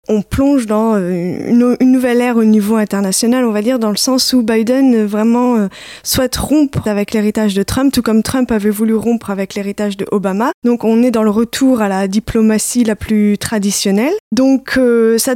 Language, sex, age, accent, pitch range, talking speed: French, female, 20-39, French, 210-260 Hz, 190 wpm